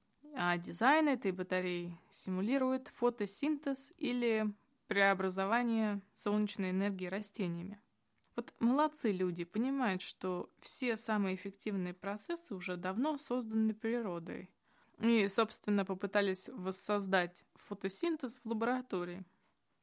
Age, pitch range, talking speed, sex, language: 20-39, 190-245 Hz, 95 wpm, female, Russian